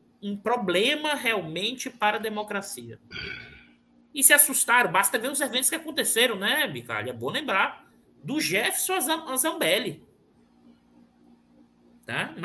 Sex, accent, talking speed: male, Brazilian, 110 wpm